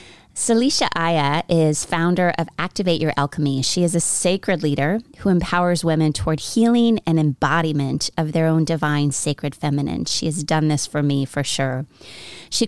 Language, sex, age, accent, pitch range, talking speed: English, female, 30-49, American, 145-180 Hz, 165 wpm